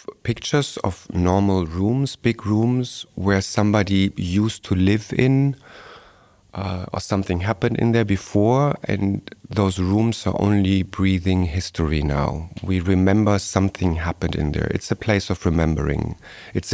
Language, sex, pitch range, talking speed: Dutch, male, 90-110 Hz, 140 wpm